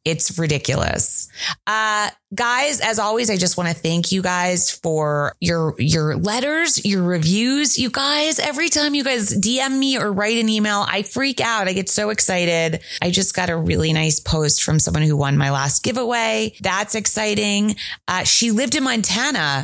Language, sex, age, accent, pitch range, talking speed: English, female, 20-39, American, 160-225 Hz, 180 wpm